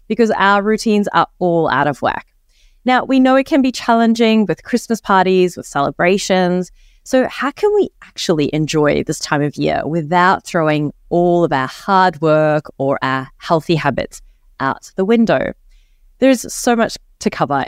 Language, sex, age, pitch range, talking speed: English, female, 20-39, 155-230 Hz, 165 wpm